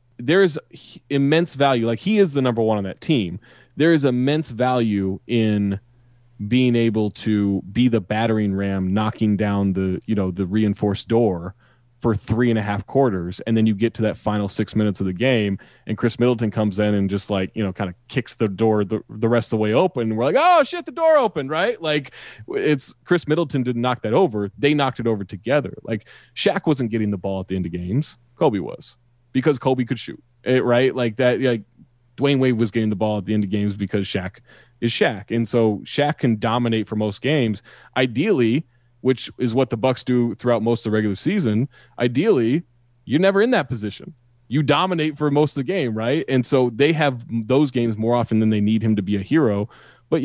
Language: English